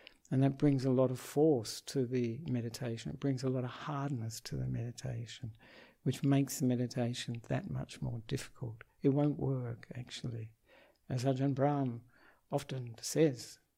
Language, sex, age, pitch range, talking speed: English, male, 60-79, 120-140 Hz, 155 wpm